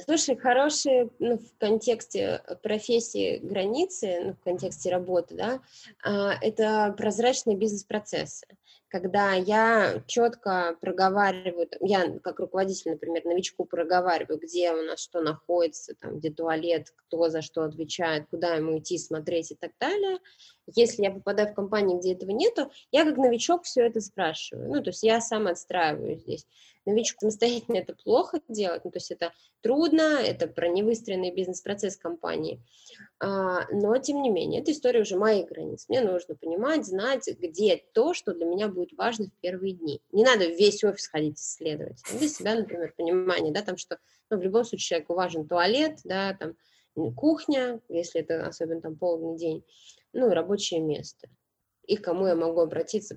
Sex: female